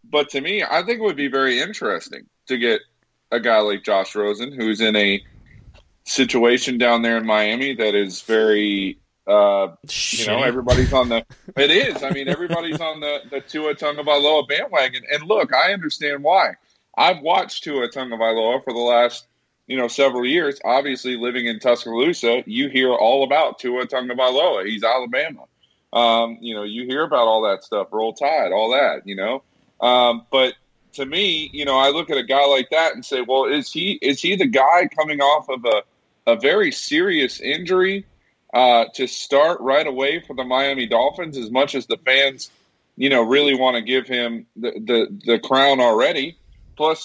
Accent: American